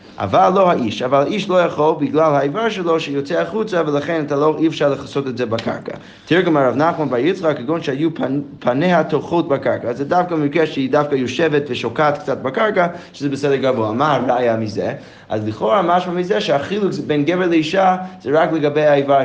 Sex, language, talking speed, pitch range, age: male, Hebrew, 185 wpm, 130-165 Hz, 20-39